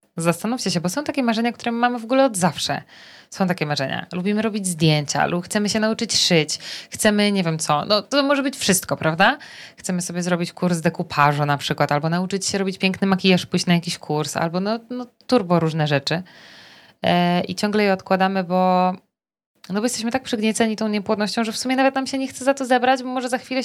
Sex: female